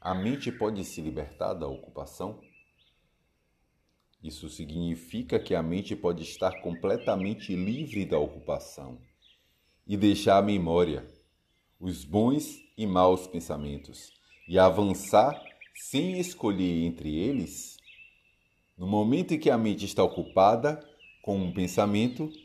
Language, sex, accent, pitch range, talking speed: Portuguese, male, Brazilian, 85-110 Hz, 120 wpm